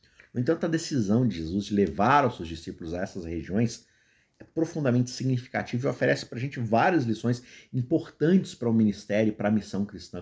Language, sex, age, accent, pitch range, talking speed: Portuguese, male, 50-69, Brazilian, 100-130 Hz, 195 wpm